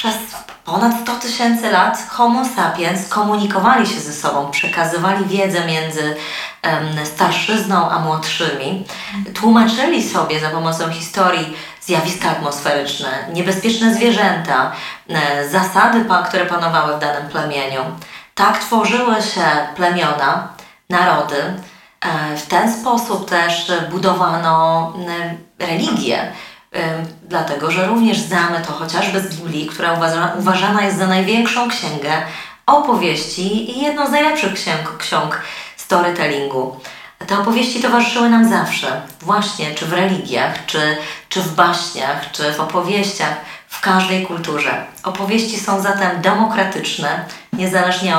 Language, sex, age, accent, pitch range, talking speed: Polish, female, 20-39, native, 160-210 Hz, 110 wpm